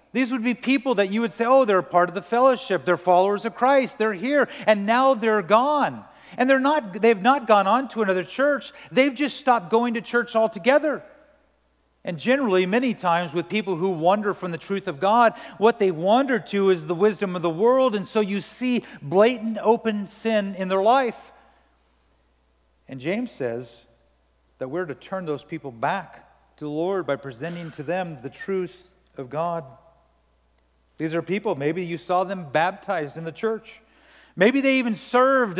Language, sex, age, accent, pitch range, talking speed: English, male, 40-59, American, 175-240 Hz, 185 wpm